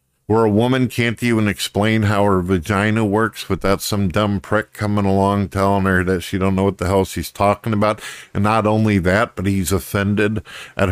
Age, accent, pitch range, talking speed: 50-69, American, 90-110 Hz, 200 wpm